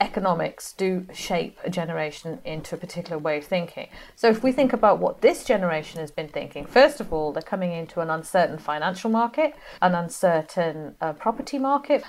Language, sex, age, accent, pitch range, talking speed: English, female, 40-59, British, 170-220 Hz, 185 wpm